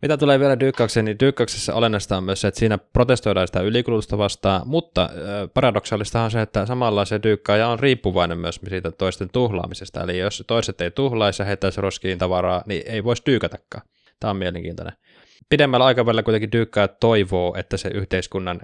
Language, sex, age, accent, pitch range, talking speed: Finnish, male, 20-39, native, 95-115 Hz, 165 wpm